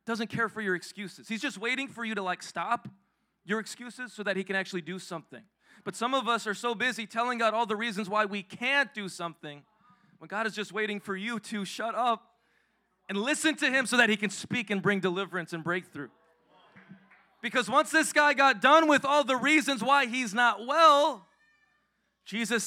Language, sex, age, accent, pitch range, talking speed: English, male, 20-39, American, 205-265 Hz, 205 wpm